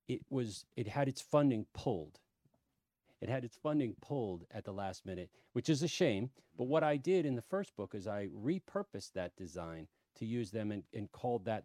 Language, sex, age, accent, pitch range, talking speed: English, male, 40-59, American, 95-130 Hz, 205 wpm